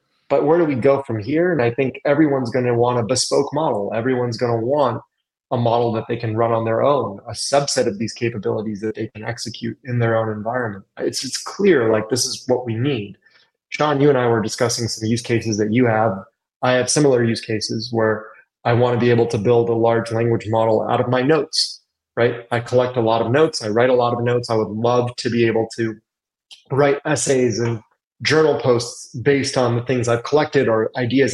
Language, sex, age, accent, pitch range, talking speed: English, male, 20-39, American, 115-140 Hz, 220 wpm